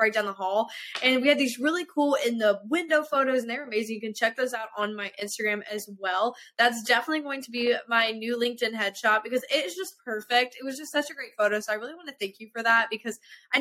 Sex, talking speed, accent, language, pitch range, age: female, 260 wpm, American, English, 220-275 Hz, 10-29